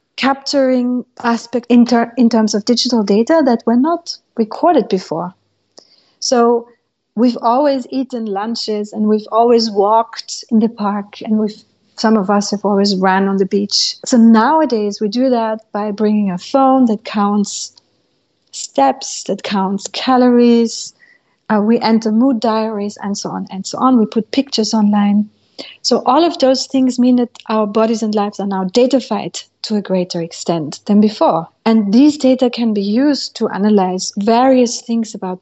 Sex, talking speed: female, 165 wpm